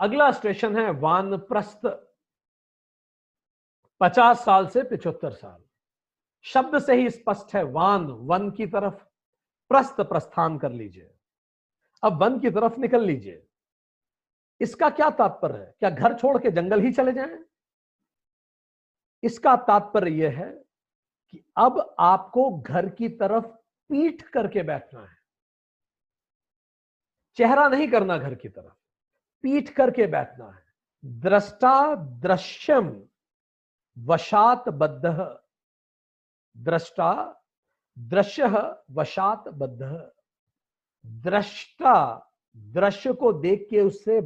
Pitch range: 180-250 Hz